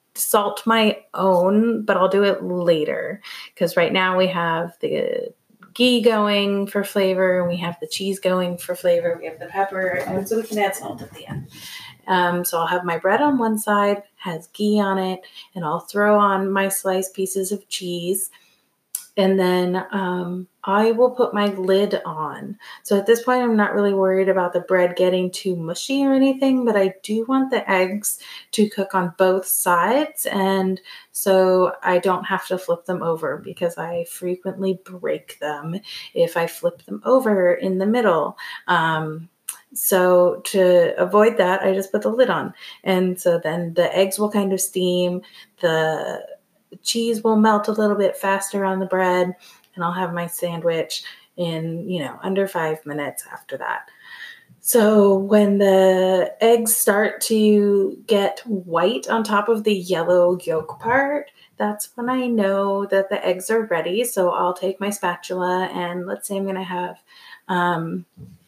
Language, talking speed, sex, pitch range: English, 175 wpm, female, 180-210 Hz